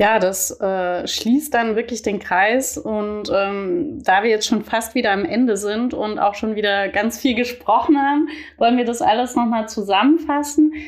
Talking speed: 180 wpm